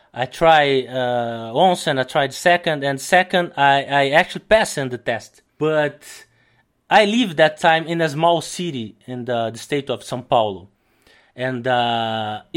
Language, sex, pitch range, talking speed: English, male, 130-180 Hz, 165 wpm